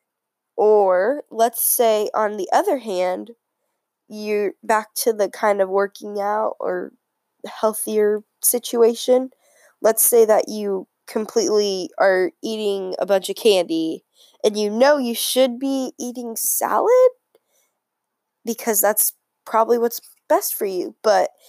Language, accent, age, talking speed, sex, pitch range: English, American, 10-29, 125 wpm, female, 200-255 Hz